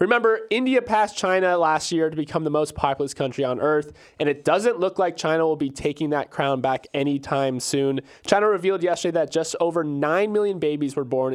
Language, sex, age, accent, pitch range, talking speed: English, male, 20-39, American, 140-175 Hz, 205 wpm